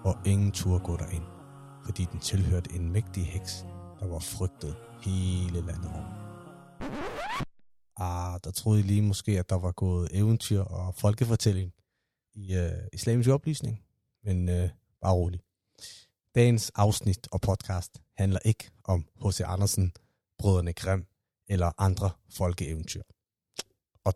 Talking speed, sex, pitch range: 125 wpm, male, 90-110 Hz